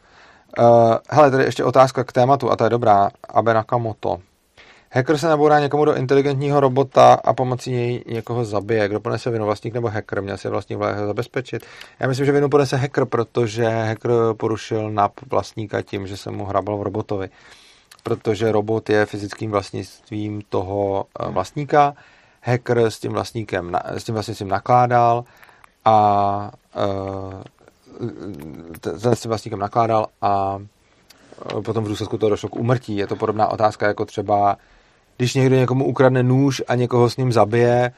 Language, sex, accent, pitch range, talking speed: Czech, male, native, 100-120 Hz, 155 wpm